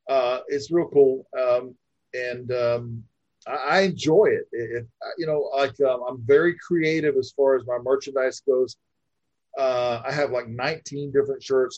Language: English